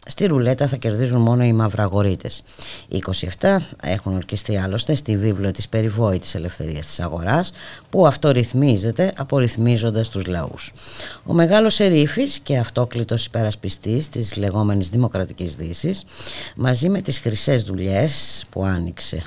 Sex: female